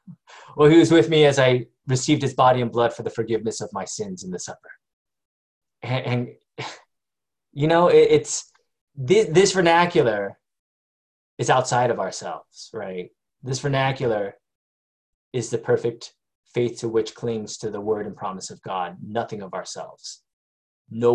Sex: male